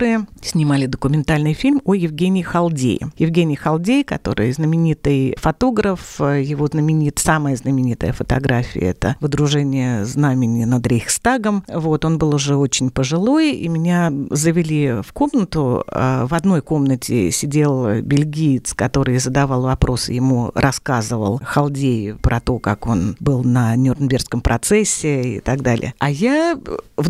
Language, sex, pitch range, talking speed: Russian, female, 135-195 Hz, 120 wpm